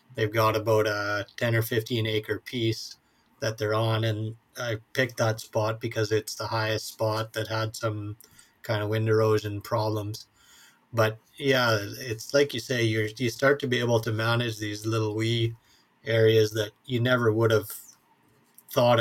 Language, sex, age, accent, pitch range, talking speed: English, male, 30-49, American, 110-120 Hz, 170 wpm